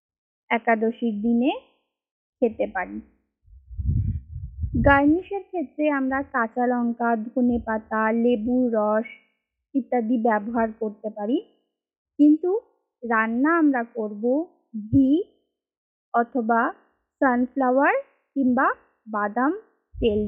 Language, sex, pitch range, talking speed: Bengali, female, 225-300 Hz, 80 wpm